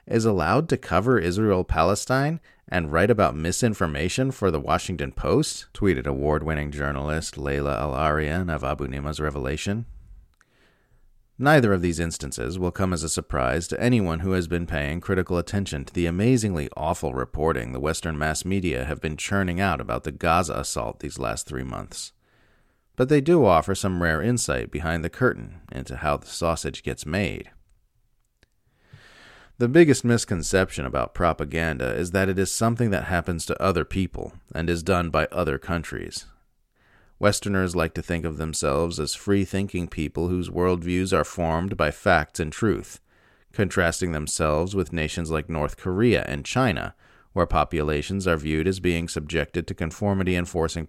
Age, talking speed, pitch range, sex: 40-59, 155 wpm, 80-100 Hz, male